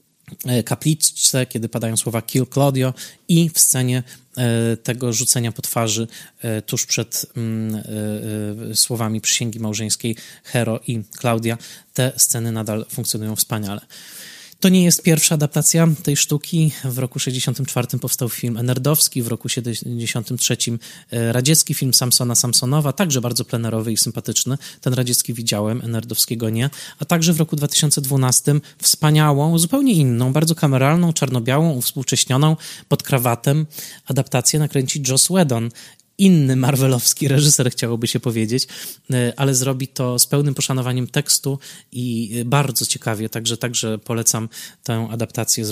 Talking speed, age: 125 wpm, 20-39